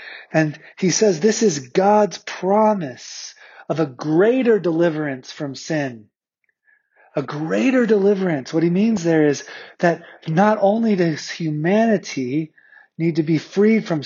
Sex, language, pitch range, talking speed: male, English, 145-195 Hz, 130 wpm